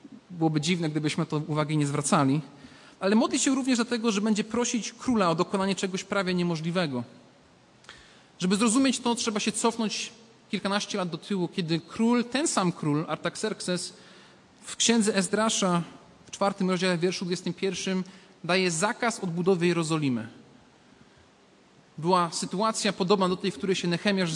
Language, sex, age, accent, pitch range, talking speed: Polish, male, 40-59, native, 175-225 Hz, 145 wpm